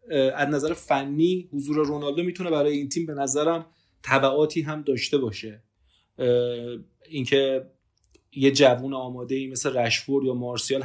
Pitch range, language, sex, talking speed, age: 120-140 Hz, Persian, male, 140 wpm, 30-49